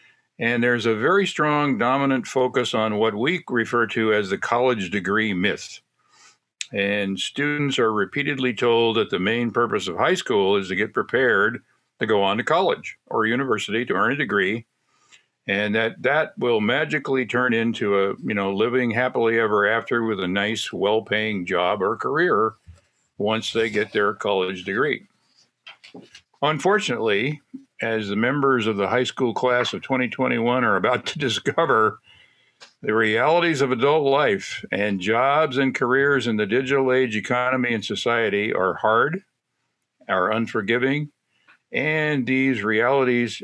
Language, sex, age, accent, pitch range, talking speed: English, male, 50-69, American, 110-130 Hz, 150 wpm